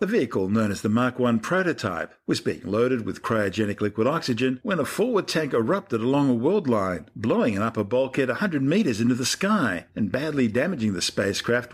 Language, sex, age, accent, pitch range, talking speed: English, male, 50-69, Australian, 105-140 Hz, 195 wpm